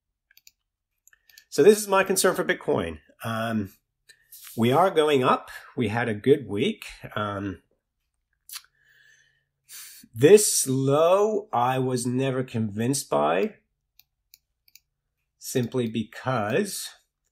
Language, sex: English, male